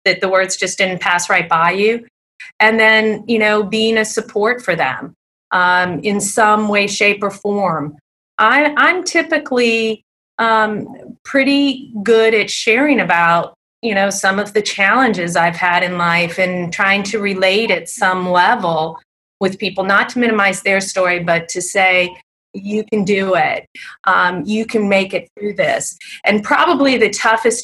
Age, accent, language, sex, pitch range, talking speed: 30-49, American, English, female, 180-215 Hz, 165 wpm